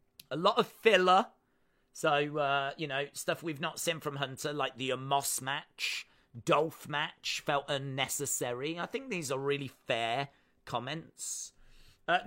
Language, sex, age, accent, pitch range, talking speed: English, male, 40-59, British, 135-185 Hz, 145 wpm